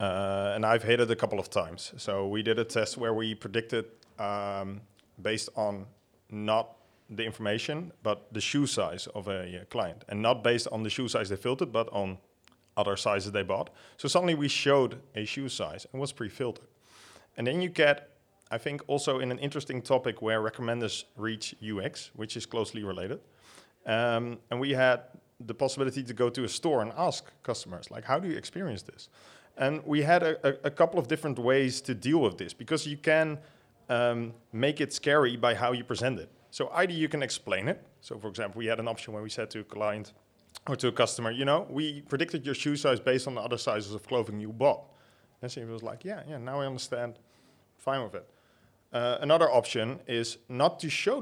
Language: English